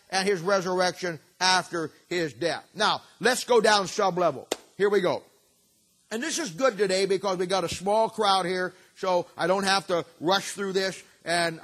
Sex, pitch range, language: male, 155-195 Hz, English